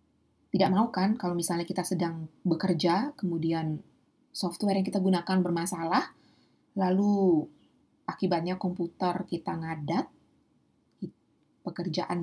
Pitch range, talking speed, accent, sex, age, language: 175-255 Hz, 100 wpm, native, female, 20-39, Indonesian